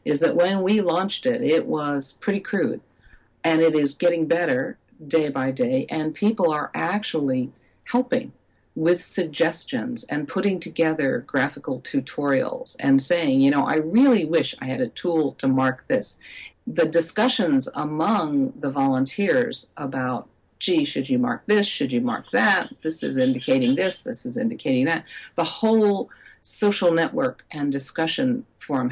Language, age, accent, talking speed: English, 50-69, American, 155 wpm